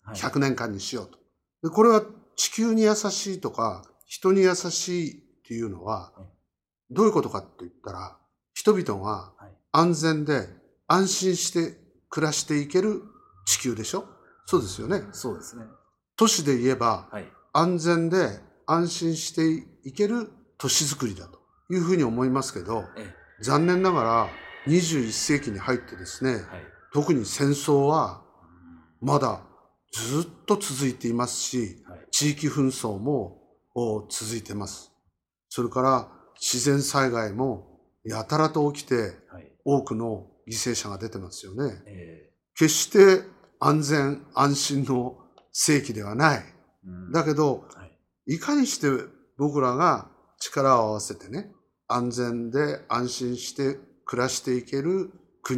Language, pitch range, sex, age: Japanese, 115-165 Hz, male, 50-69